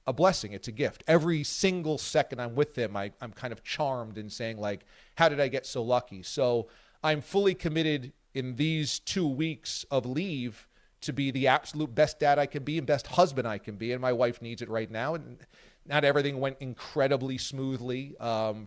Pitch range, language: 120-155 Hz, English